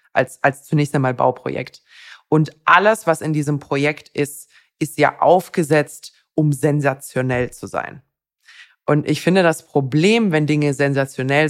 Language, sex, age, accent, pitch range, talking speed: German, female, 20-39, German, 140-165 Hz, 140 wpm